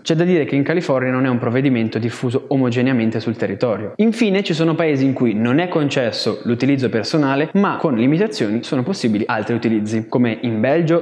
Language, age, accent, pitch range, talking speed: Italian, 20-39, native, 120-165 Hz, 190 wpm